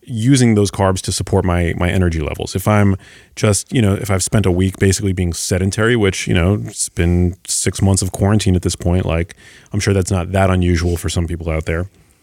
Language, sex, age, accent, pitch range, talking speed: English, male, 30-49, American, 95-110 Hz, 225 wpm